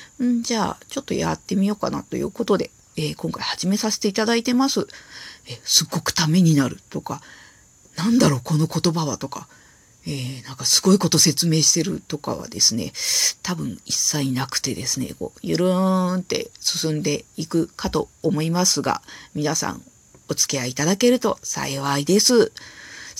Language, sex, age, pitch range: Japanese, female, 40-59, 150-250 Hz